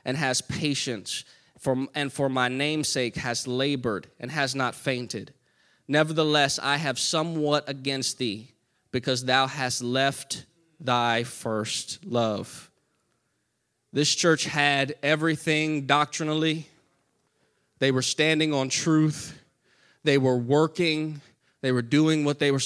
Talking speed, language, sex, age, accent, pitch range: 120 wpm, English, male, 20-39, American, 125-155 Hz